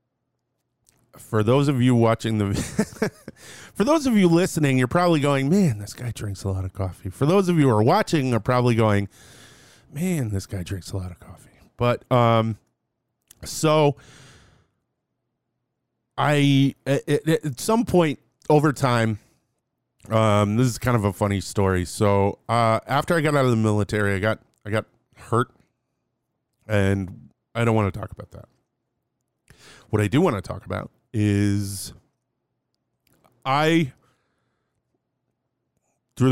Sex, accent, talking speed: male, American, 145 wpm